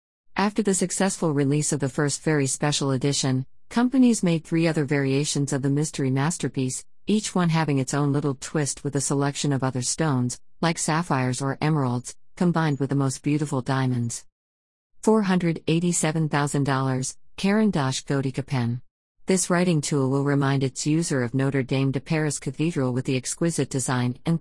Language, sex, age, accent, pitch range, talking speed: English, female, 50-69, American, 135-165 Hz, 155 wpm